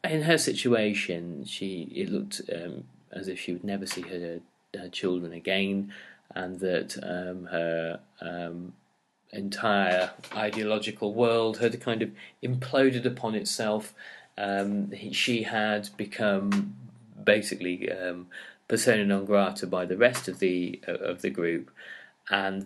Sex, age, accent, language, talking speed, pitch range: male, 30-49, British, English, 130 wpm, 95-115 Hz